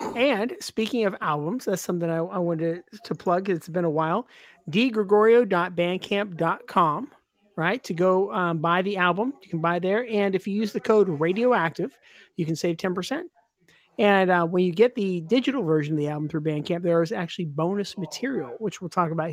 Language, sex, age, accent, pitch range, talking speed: English, male, 40-59, American, 170-205 Hz, 195 wpm